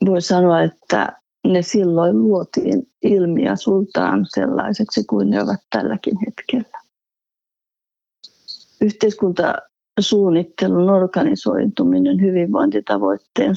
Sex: female